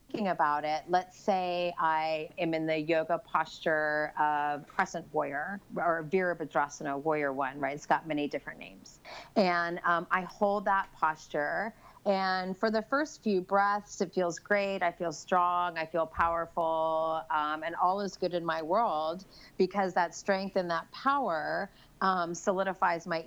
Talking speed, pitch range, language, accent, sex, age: 160 wpm, 170-230 Hz, English, American, female, 30-49